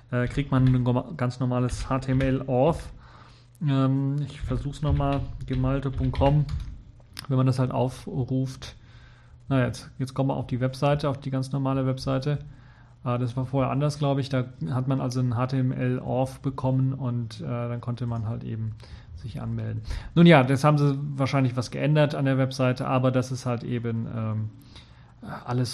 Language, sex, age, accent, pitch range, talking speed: German, male, 40-59, German, 120-135 Hz, 155 wpm